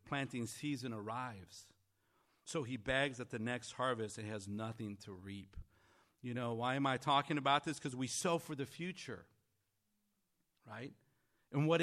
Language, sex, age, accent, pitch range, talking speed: English, male, 50-69, American, 120-155 Hz, 160 wpm